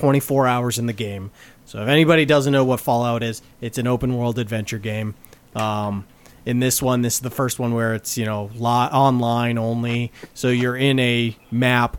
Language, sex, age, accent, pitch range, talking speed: English, male, 30-49, American, 115-140 Hz, 195 wpm